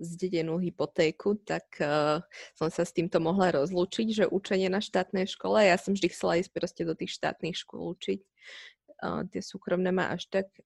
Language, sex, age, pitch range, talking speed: Slovak, female, 20-39, 175-210 Hz, 180 wpm